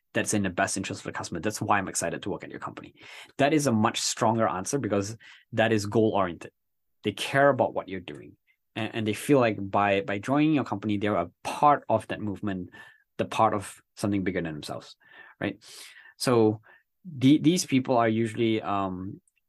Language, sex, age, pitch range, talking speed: English, male, 20-39, 100-125 Hz, 200 wpm